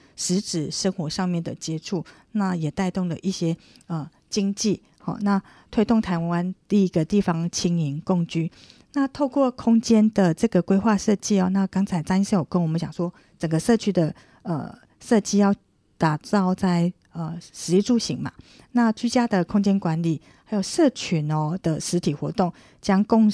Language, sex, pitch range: Chinese, female, 165-200 Hz